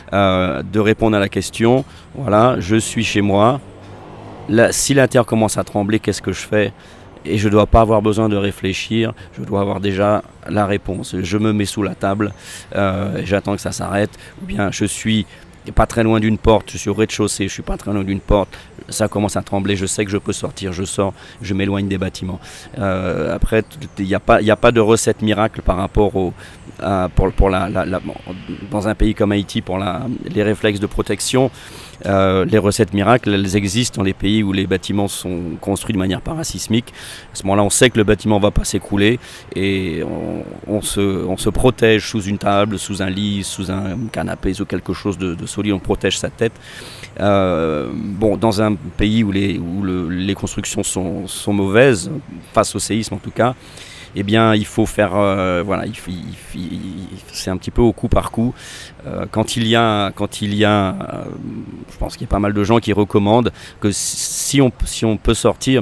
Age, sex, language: 40-59, male, French